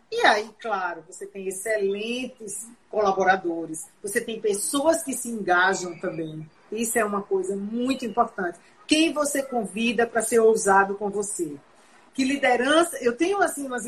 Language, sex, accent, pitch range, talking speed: Portuguese, female, Brazilian, 225-330 Hz, 145 wpm